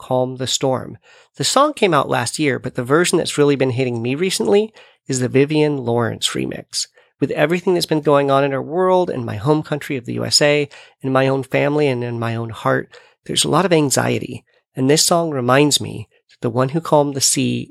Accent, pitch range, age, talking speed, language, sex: American, 120-155 Hz, 40-59, 220 wpm, English, male